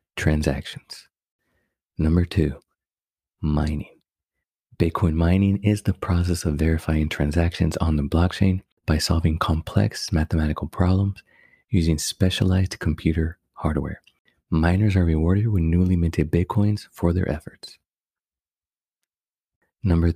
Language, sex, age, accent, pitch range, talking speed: English, male, 30-49, American, 80-95 Hz, 105 wpm